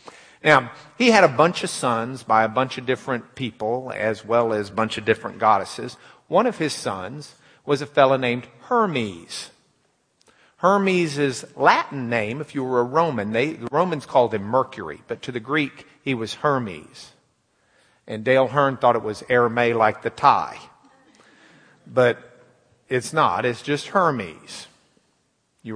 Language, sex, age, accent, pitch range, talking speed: English, male, 50-69, American, 120-150 Hz, 160 wpm